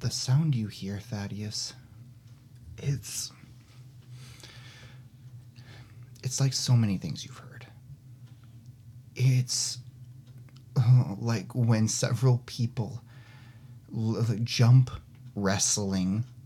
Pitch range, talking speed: 120-125 Hz, 75 wpm